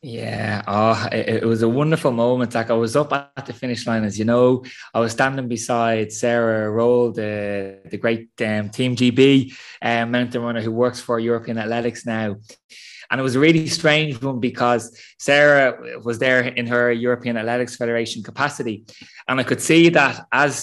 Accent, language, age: Irish, English, 20-39